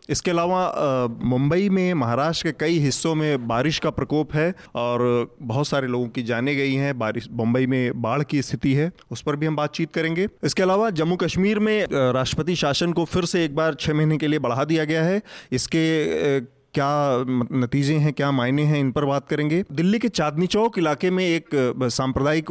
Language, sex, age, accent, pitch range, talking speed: Hindi, male, 30-49, native, 130-160 Hz, 195 wpm